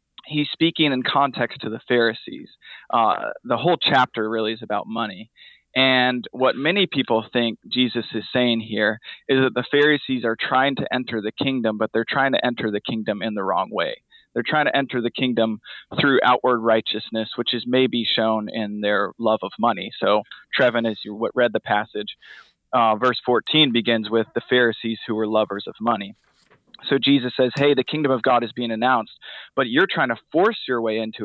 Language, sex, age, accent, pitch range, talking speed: English, male, 20-39, American, 110-135 Hz, 195 wpm